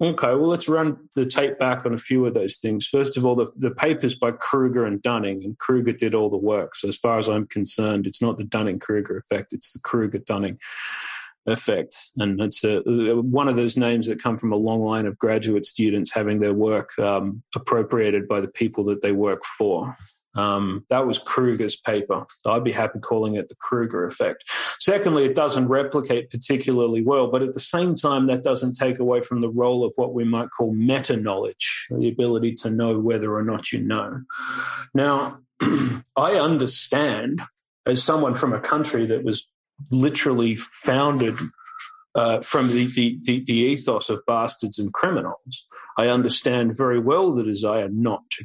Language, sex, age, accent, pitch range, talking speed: English, male, 30-49, Australian, 110-130 Hz, 185 wpm